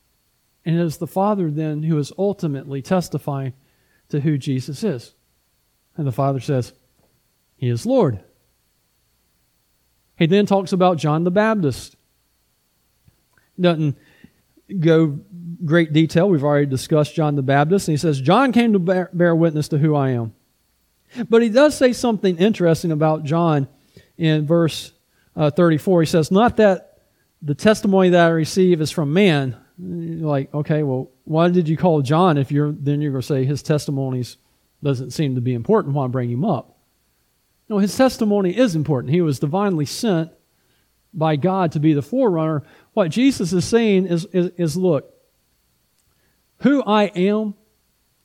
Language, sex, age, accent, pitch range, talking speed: English, male, 40-59, American, 145-190 Hz, 155 wpm